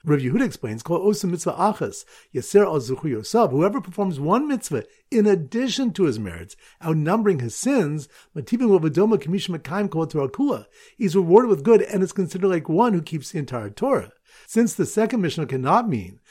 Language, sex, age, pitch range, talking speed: English, male, 50-69, 140-210 Hz, 160 wpm